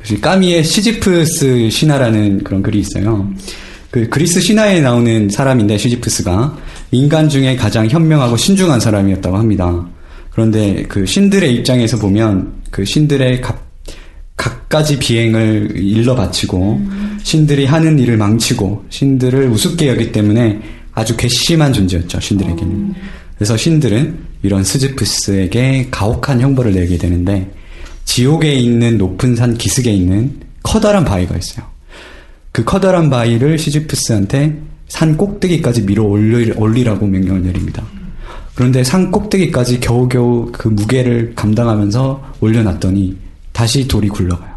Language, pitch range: Korean, 100-135 Hz